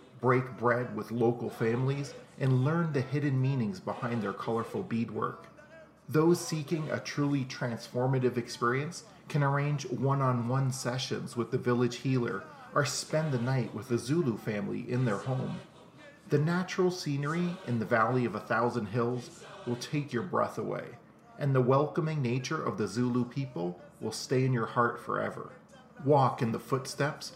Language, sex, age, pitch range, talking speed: English, male, 40-59, 115-140 Hz, 160 wpm